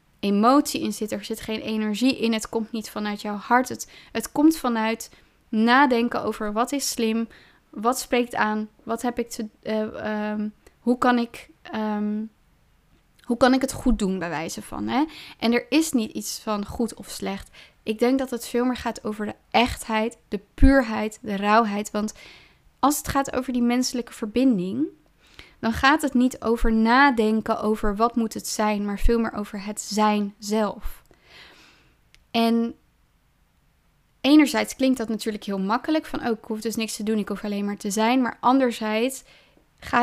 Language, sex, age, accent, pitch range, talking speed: Dutch, female, 20-39, Dutch, 215-250 Hz, 175 wpm